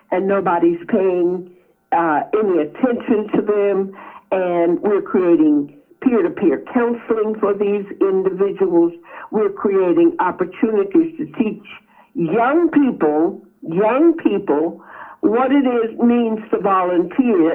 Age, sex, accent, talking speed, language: 60-79, female, American, 105 wpm, English